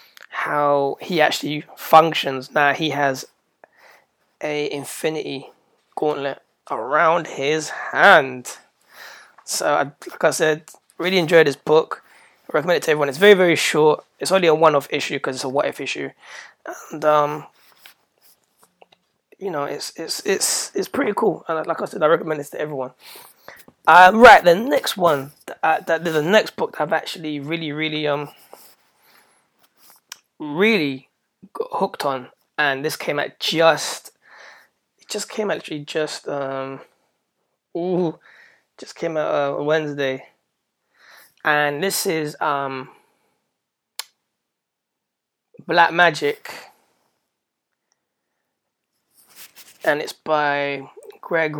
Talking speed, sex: 125 wpm, male